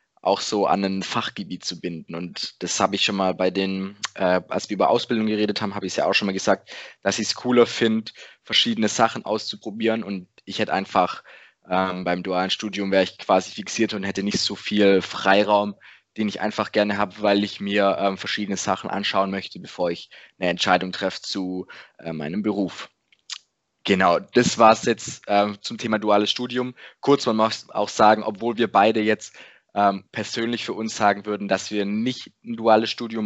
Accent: German